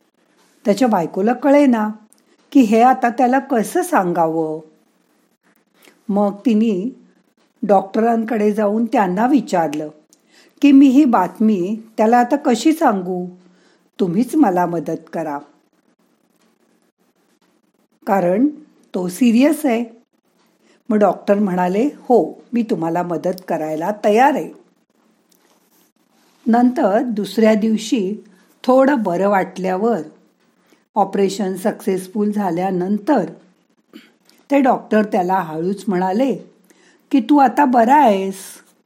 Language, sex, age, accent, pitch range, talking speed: Marathi, female, 50-69, native, 190-245 Hz, 95 wpm